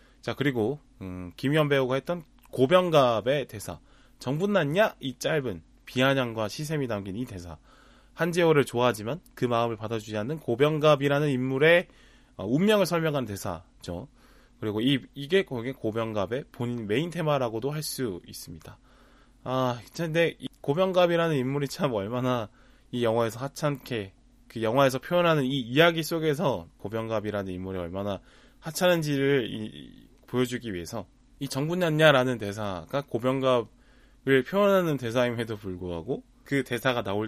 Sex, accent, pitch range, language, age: male, native, 110-145 Hz, Korean, 20-39